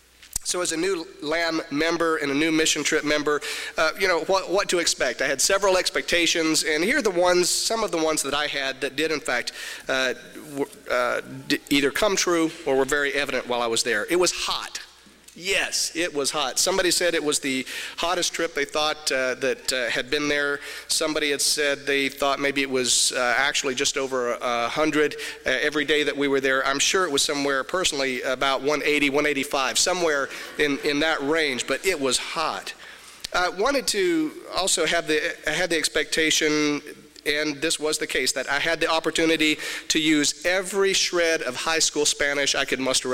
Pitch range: 135-160 Hz